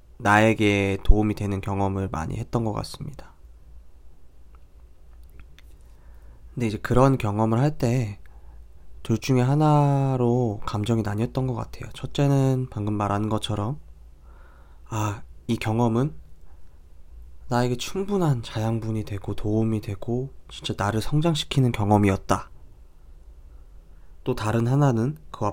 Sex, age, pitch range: male, 20-39, 75-120 Hz